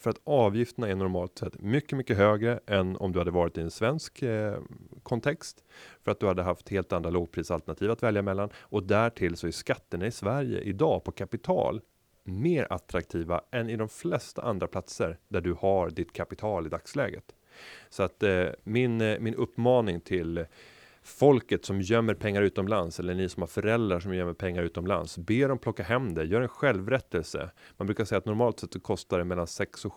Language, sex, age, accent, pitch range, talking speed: Swedish, male, 30-49, native, 90-115 Hz, 195 wpm